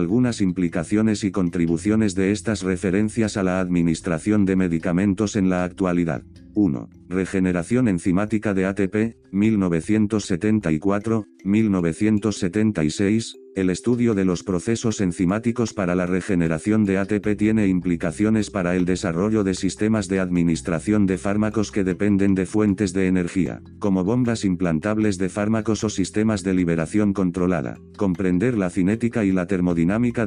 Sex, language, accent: male, English, Spanish